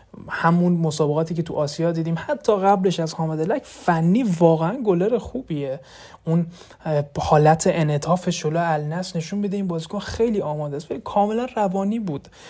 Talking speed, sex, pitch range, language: 145 wpm, male, 155-190 Hz, Persian